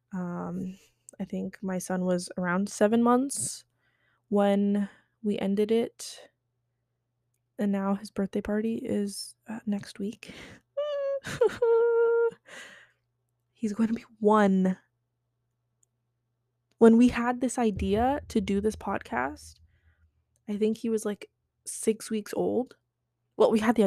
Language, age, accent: English, 20-39, American